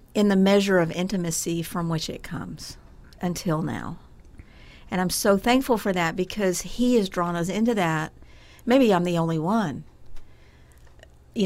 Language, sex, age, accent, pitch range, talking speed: English, female, 50-69, American, 160-195 Hz, 155 wpm